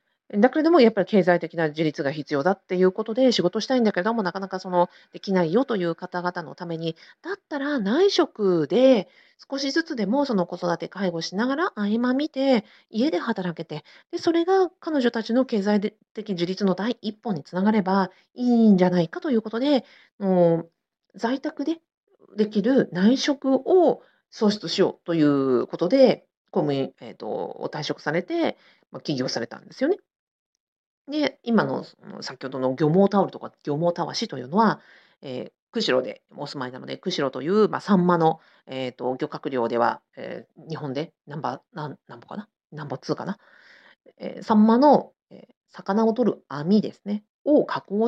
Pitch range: 175-265 Hz